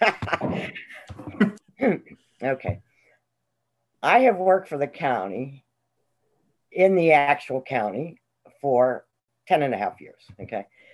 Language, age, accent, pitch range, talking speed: English, 50-69, American, 125-180 Hz, 100 wpm